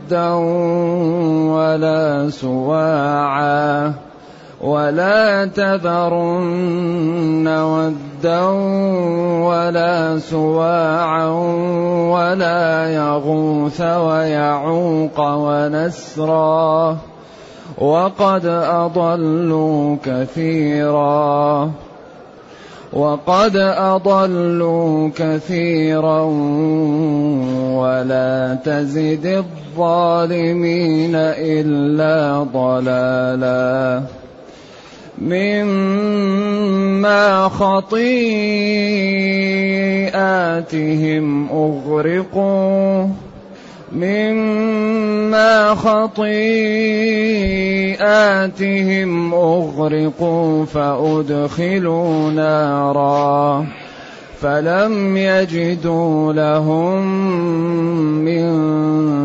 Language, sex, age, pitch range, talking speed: Arabic, male, 30-49, 150-185 Hz, 35 wpm